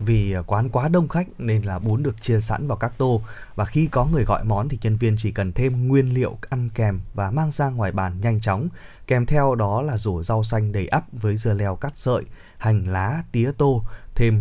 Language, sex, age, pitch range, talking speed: Vietnamese, male, 20-39, 105-135 Hz, 235 wpm